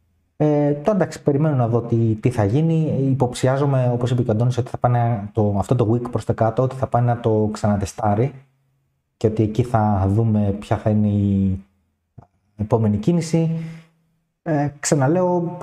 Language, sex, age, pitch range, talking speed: Greek, male, 20-39, 110-140 Hz, 170 wpm